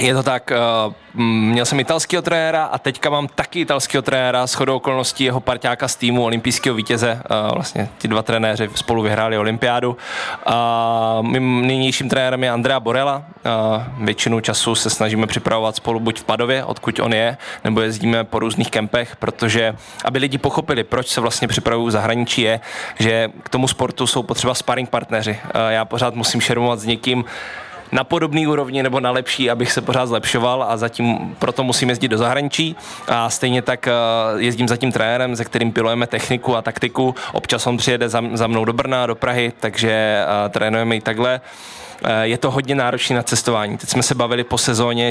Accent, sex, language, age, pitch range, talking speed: native, male, Czech, 20-39, 115-130 Hz, 175 wpm